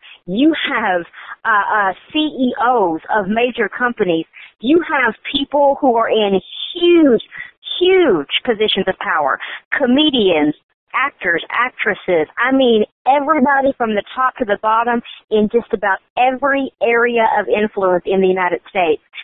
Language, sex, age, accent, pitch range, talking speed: English, female, 40-59, American, 195-265 Hz, 130 wpm